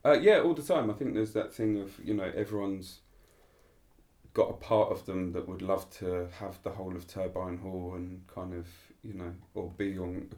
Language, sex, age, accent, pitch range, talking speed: English, male, 30-49, British, 90-105 Hz, 220 wpm